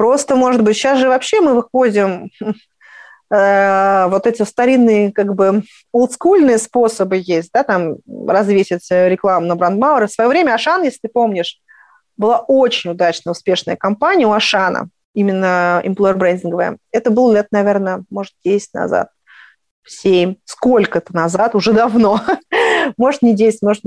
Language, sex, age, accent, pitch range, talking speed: Russian, female, 20-39, native, 200-260 Hz, 140 wpm